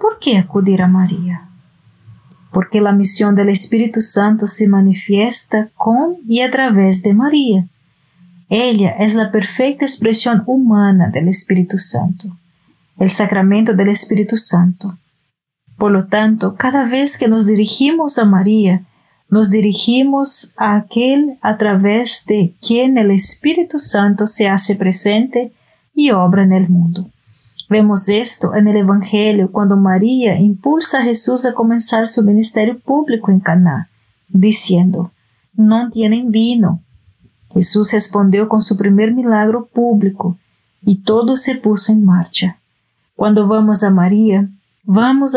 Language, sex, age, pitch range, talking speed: Spanish, female, 30-49, 190-230 Hz, 135 wpm